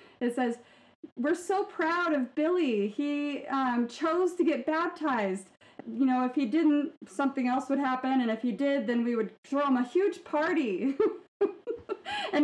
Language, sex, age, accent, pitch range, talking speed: English, female, 30-49, American, 225-295 Hz, 170 wpm